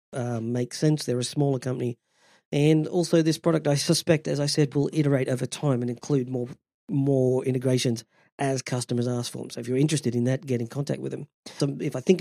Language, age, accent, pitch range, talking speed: English, 40-59, Australian, 130-155 Hz, 220 wpm